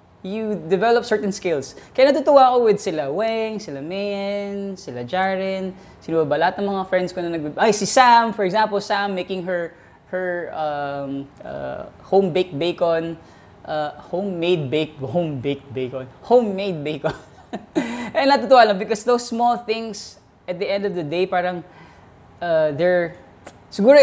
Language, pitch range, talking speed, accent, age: English, 155-205 Hz, 145 wpm, Filipino, 20-39